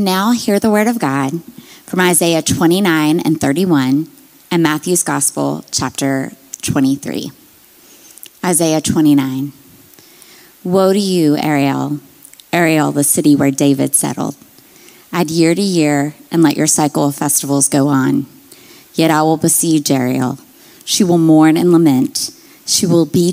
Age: 30-49